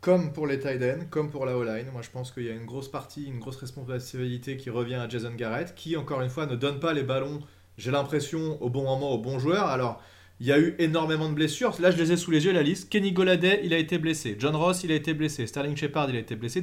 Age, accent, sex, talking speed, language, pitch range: 30-49, French, male, 280 wpm, French, 125-170 Hz